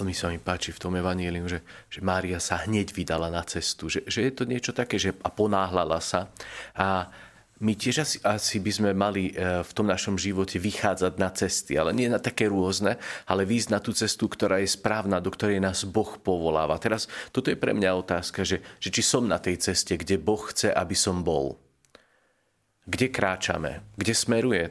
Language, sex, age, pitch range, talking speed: Slovak, male, 40-59, 95-120 Hz, 200 wpm